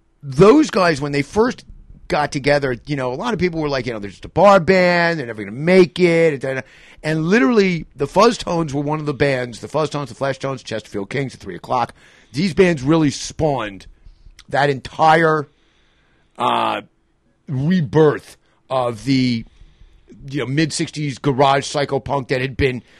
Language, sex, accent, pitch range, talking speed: English, male, American, 115-160 Hz, 175 wpm